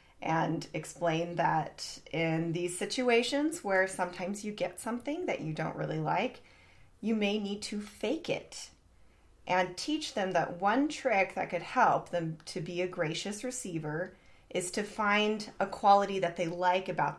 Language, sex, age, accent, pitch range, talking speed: English, female, 30-49, American, 165-200 Hz, 160 wpm